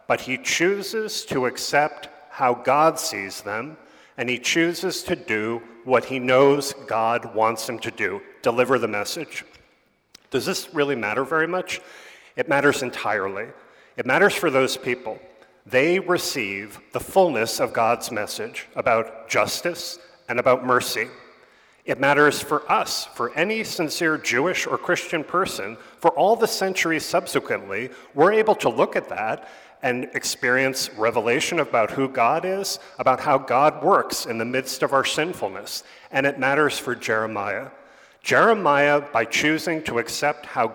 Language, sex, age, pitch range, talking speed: English, male, 40-59, 120-160 Hz, 150 wpm